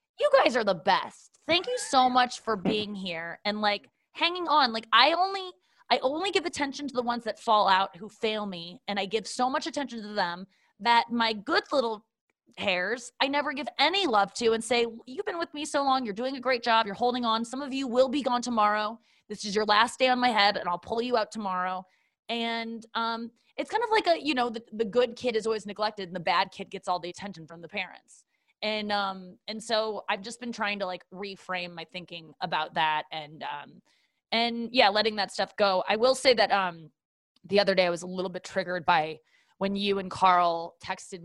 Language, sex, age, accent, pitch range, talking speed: English, female, 20-39, American, 185-240 Hz, 230 wpm